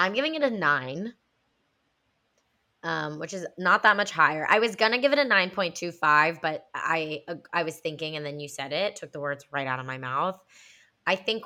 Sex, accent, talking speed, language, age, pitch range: female, American, 205 wpm, English, 20-39, 145-170 Hz